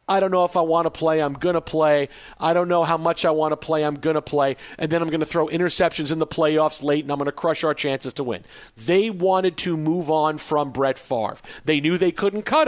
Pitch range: 155-195 Hz